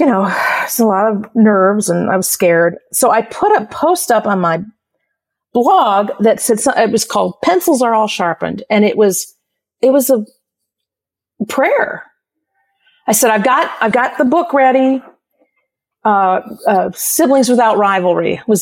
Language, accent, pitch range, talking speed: English, American, 205-260 Hz, 170 wpm